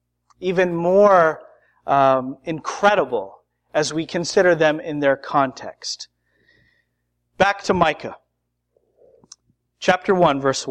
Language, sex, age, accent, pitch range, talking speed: English, male, 40-59, American, 130-205 Hz, 95 wpm